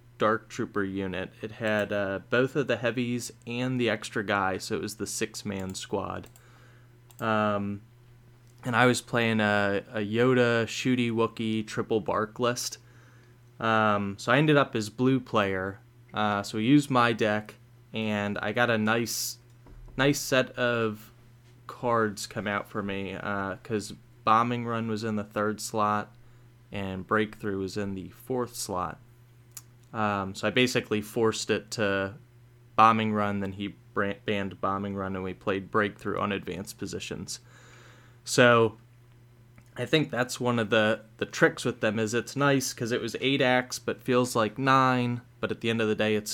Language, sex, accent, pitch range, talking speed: English, male, American, 105-120 Hz, 165 wpm